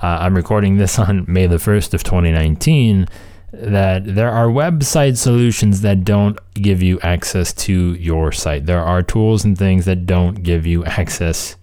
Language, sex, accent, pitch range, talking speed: English, male, American, 90-110 Hz, 170 wpm